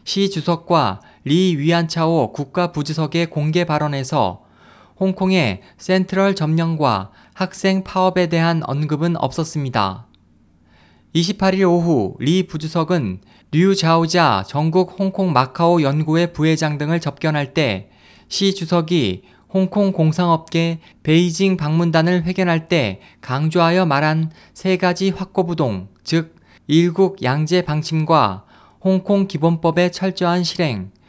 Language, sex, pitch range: Korean, male, 140-180 Hz